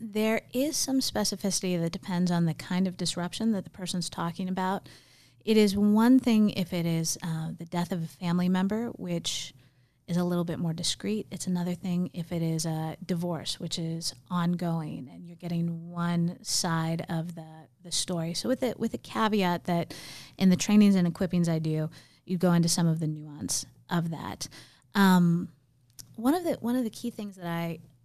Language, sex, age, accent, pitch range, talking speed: English, female, 30-49, American, 165-195 Hz, 195 wpm